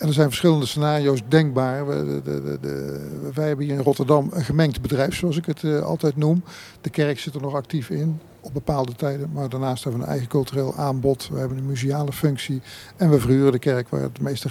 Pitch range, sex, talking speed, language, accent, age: 130-150 Hz, male, 230 wpm, Dutch, Dutch, 50-69